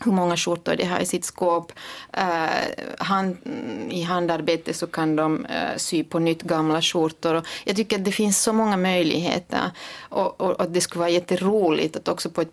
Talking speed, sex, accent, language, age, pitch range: 200 wpm, female, Swedish, Finnish, 30-49, 170-200 Hz